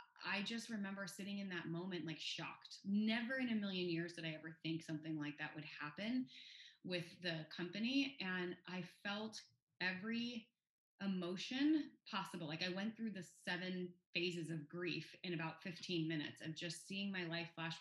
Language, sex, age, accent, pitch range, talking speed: English, female, 20-39, American, 165-200 Hz, 170 wpm